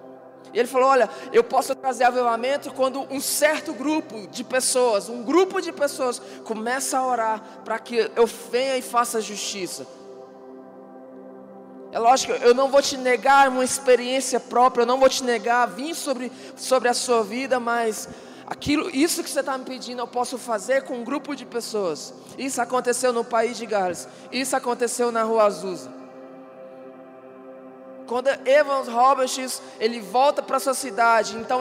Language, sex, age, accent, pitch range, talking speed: Portuguese, male, 20-39, Brazilian, 230-270 Hz, 160 wpm